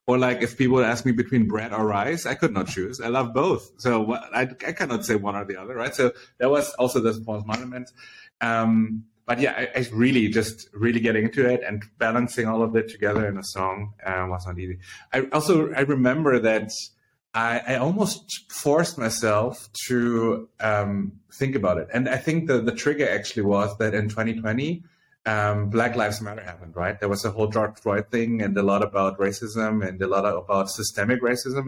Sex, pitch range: male, 105-125 Hz